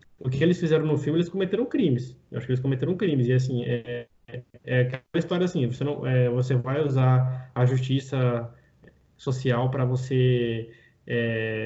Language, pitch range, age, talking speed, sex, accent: Portuguese, 125-150 Hz, 10-29, 180 wpm, male, Brazilian